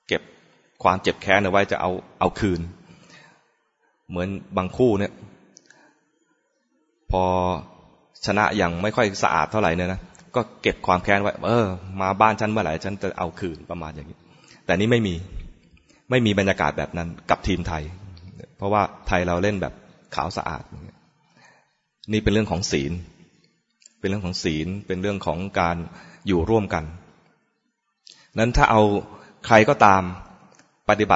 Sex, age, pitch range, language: male, 20-39, 90-110 Hz, English